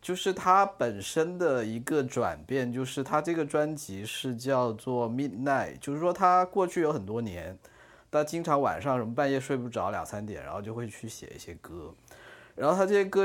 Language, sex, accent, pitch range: Chinese, male, native, 120-165 Hz